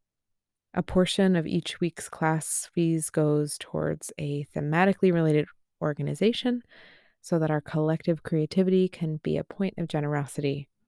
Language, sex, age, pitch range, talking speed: English, female, 20-39, 150-180 Hz, 130 wpm